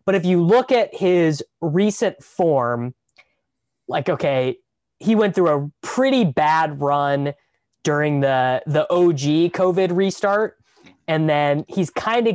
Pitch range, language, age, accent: 135-175 Hz, English, 20-39, American